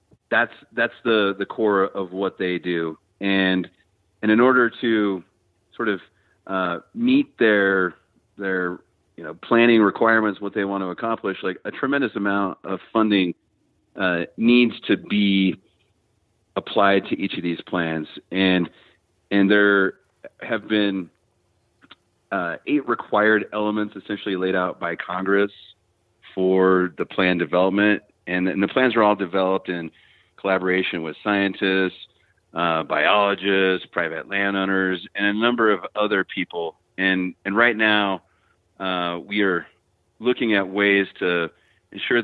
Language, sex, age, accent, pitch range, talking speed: English, male, 30-49, American, 95-105 Hz, 135 wpm